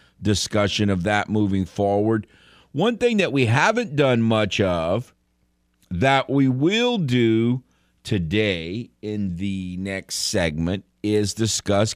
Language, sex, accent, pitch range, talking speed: English, male, American, 75-105 Hz, 120 wpm